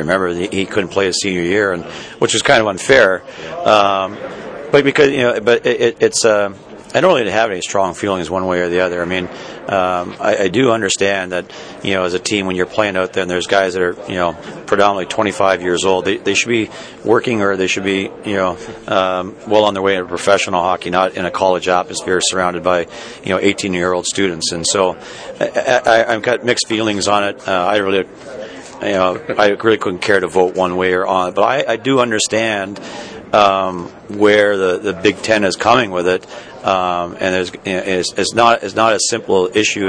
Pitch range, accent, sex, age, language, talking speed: 90-105 Hz, American, male, 40-59, English, 220 wpm